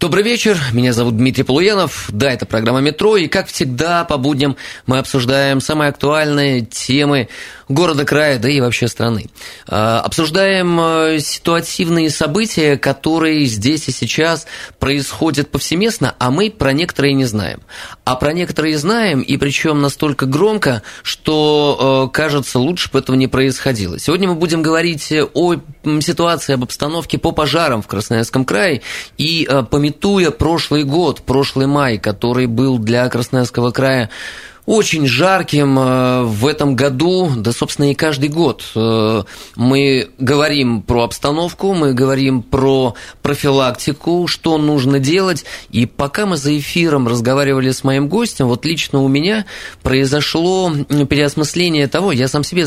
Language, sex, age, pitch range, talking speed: Russian, male, 20-39, 125-155 Hz, 135 wpm